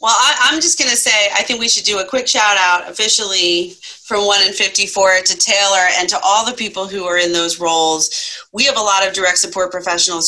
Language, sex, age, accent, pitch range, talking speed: English, female, 30-49, American, 160-200 Hz, 230 wpm